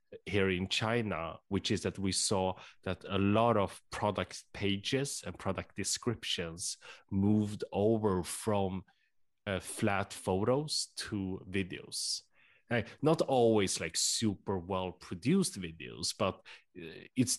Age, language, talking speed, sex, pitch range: 30-49, English, 120 wpm, male, 90-110 Hz